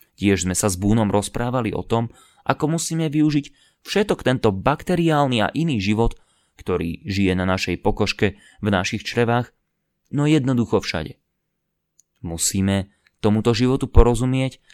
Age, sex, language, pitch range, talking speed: 30-49, male, Slovak, 95-125 Hz, 130 wpm